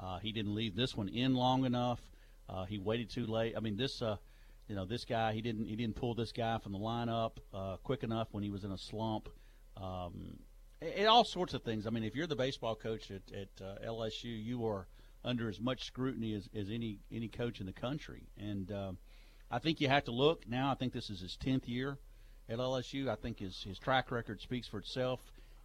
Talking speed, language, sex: 225 wpm, English, male